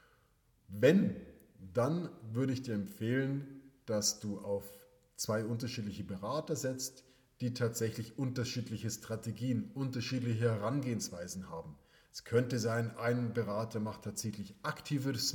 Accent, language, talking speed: German, German, 110 wpm